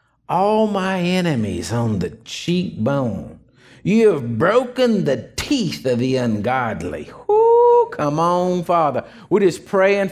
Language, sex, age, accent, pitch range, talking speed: English, male, 50-69, American, 120-195 Hz, 125 wpm